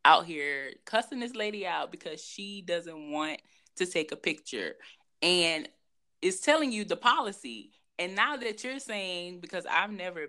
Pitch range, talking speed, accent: 175-240 Hz, 165 wpm, American